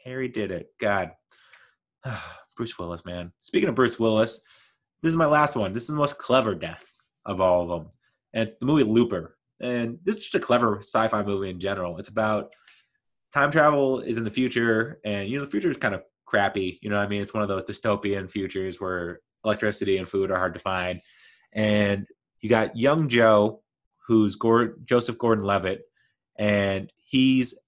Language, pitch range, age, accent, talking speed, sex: English, 100-120 Hz, 20-39, American, 190 wpm, male